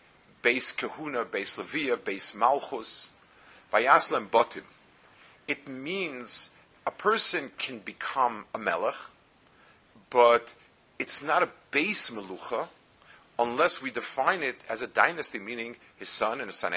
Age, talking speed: 50-69, 125 wpm